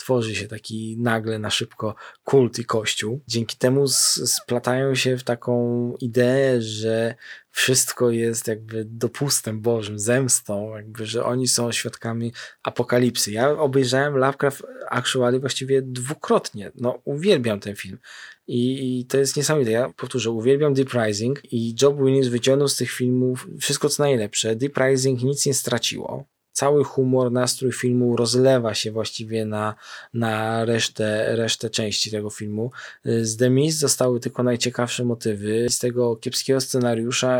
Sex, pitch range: male, 115-130 Hz